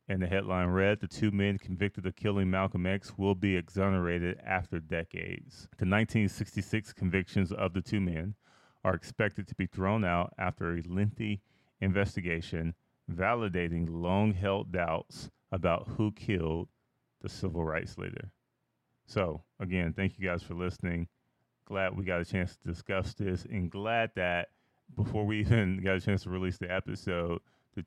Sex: male